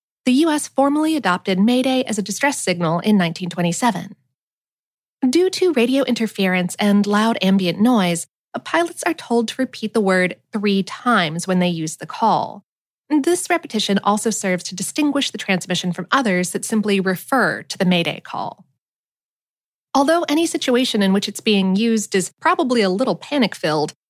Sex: female